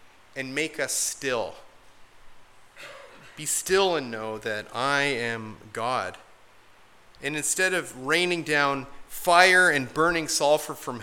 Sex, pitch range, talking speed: male, 130-170 Hz, 120 wpm